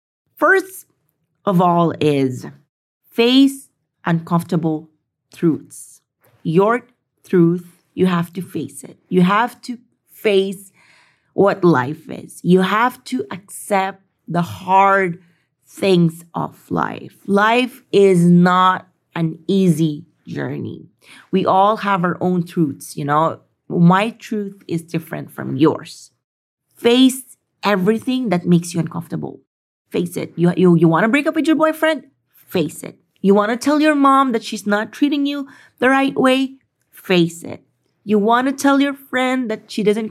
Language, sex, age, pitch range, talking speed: English, female, 30-49, 170-245 Hz, 140 wpm